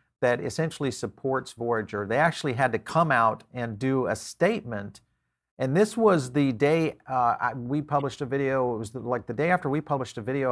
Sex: male